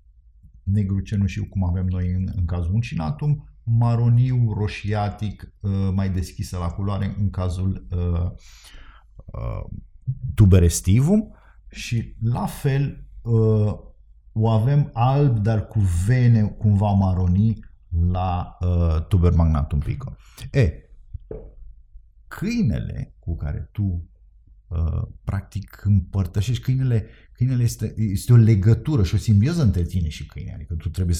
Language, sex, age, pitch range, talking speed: Romanian, male, 50-69, 85-110 Hz, 115 wpm